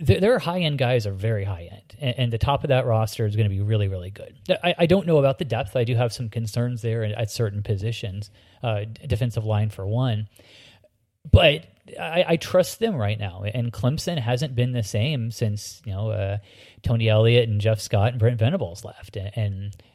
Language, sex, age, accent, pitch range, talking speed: English, male, 30-49, American, 105-125 Hz, 210 wpm